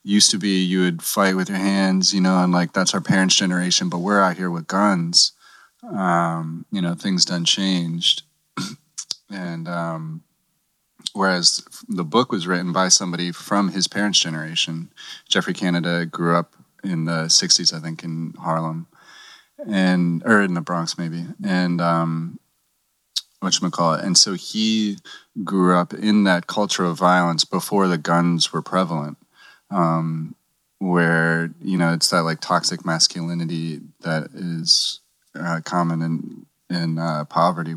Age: 30-49